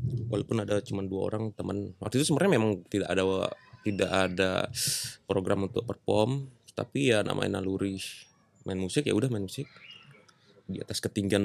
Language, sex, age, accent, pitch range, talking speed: Indonesian, male, 20-39, native, 100-125 Hz, 155 wpm